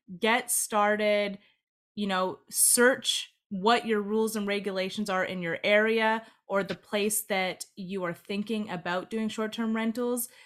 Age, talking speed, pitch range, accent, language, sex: 20-39, 145 wpm, 200-240 Hz, American, English, female